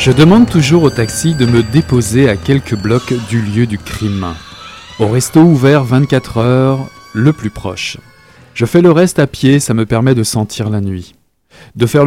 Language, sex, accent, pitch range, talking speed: French, male, French, 110-155 Hz, 190 wpm